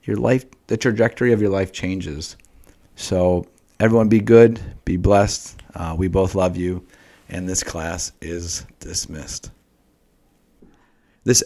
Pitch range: 90-110 Hz